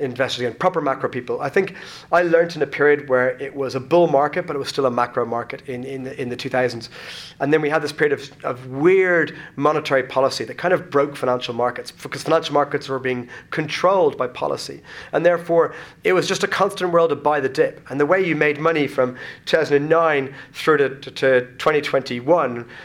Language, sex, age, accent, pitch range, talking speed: English, male, 30-49, British, 130-165 Hz, 215 wpm